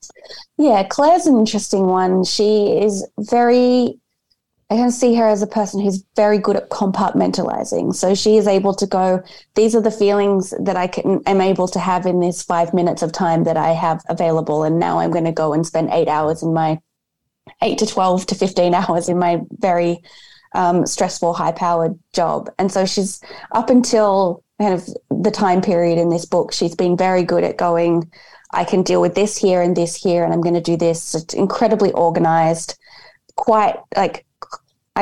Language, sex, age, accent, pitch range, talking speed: English, female, 20-39, Australian, 170-210 Hz, 190 wpm